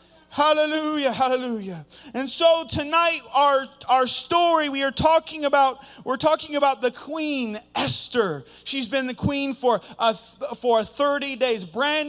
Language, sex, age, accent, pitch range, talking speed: English, male, 30-49, American, 255-325 Hz, 145 wpm